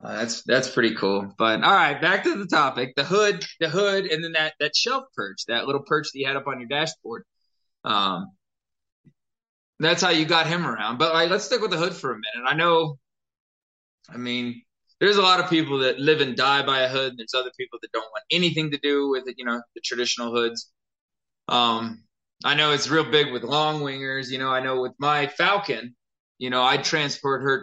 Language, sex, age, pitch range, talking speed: English, male, 20-39, 115-145 Hz, 225 wpm